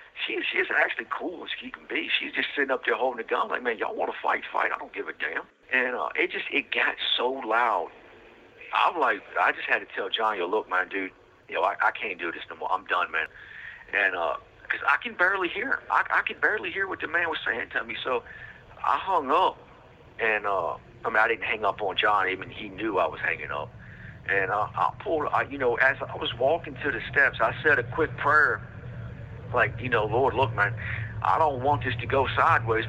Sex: male